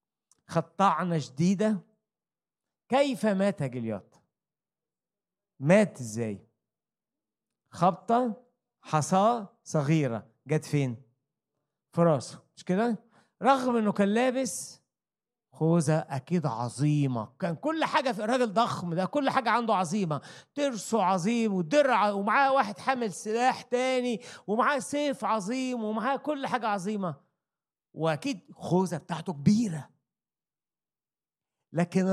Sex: male